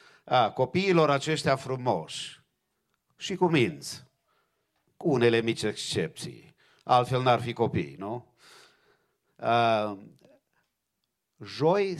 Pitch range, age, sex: 120-150 Hz, 50-69, male